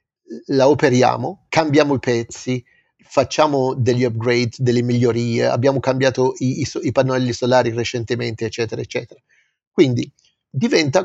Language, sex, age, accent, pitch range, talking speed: Italian, male, 50-69, native, 120-165 Hz, 115 wpm